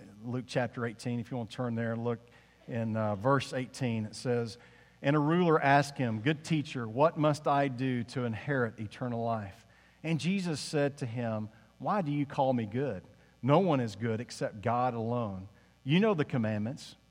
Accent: American